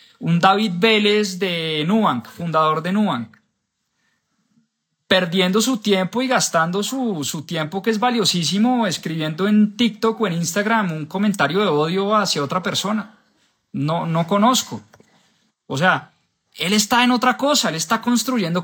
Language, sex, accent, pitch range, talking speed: Spanish, male, Colombian, 155-210 Hz, 145 wpm